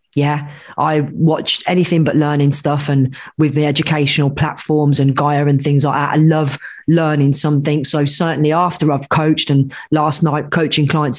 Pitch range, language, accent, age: 145-190 Hz, English, British, 30-49